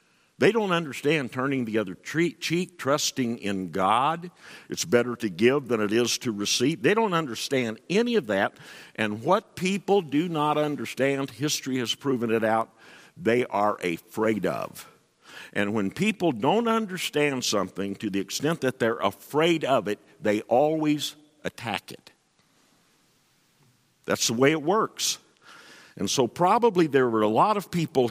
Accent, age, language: American, 50-69, English